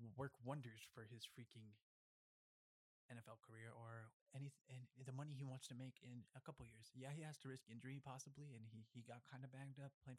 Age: 20-39